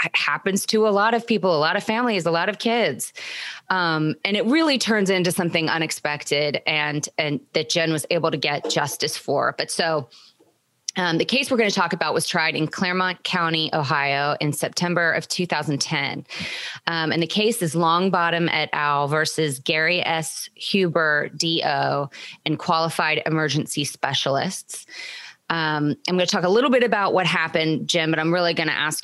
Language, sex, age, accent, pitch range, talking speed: English, female, 20-39, American, 150-180 Hz, 180 wpm